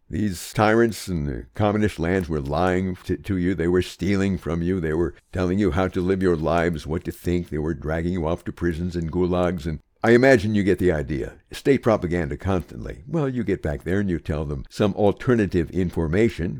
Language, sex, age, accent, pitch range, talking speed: English, male, 60-79, American, 85-125 Hz, 215 wpm